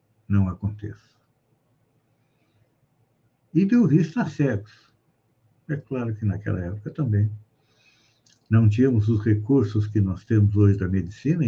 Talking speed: 120 wpm